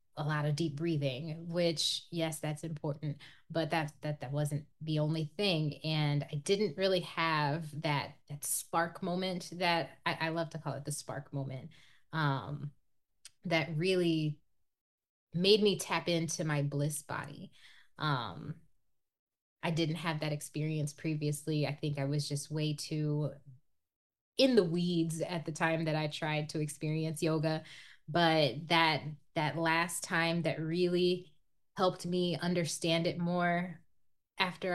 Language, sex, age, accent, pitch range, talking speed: English, female, 10-29, American, 150-175 Hz, 145 wpm